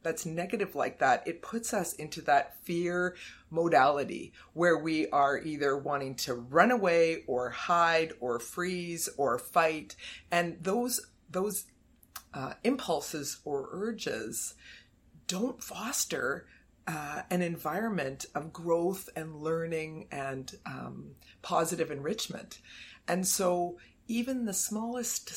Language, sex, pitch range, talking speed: English, female, 160-210 Hz, 120 wpm